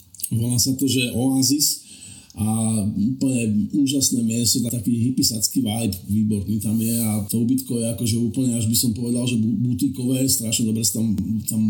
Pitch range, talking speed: 120-145 Hz, 165 wpm